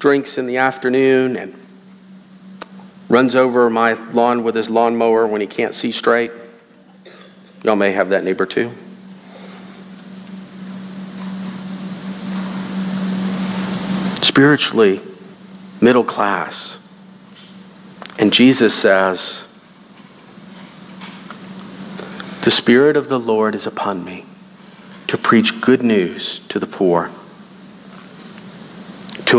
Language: English